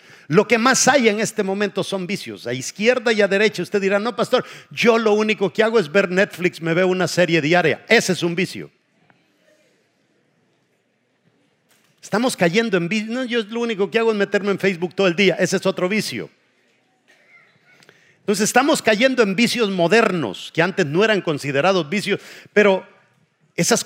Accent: Mexican